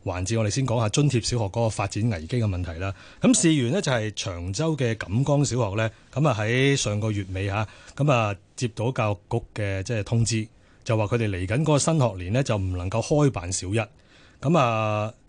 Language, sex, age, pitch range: Chinese, male, 30-49, 100-130 Hz